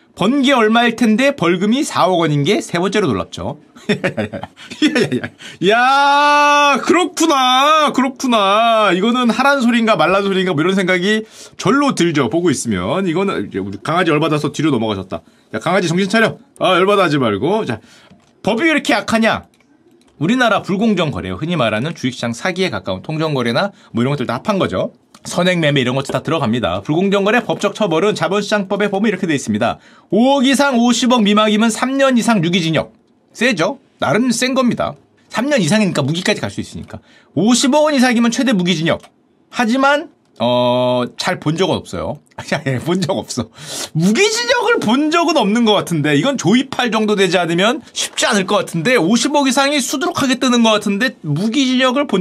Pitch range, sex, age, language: 170-255 Hz, male, 30-49, Korean